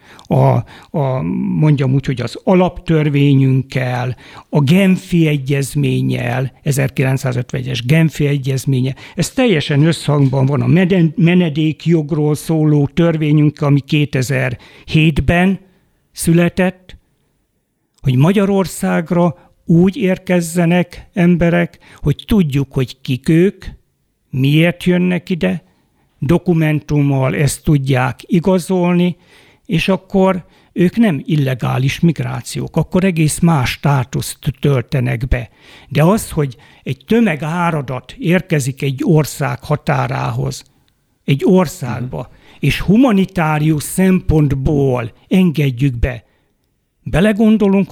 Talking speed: 90 wpm